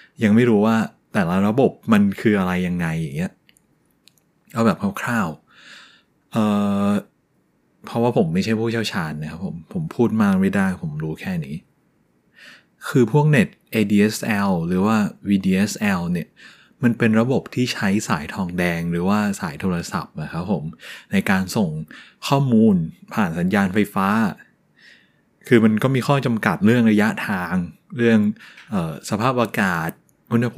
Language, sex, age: Thai, male, 20-39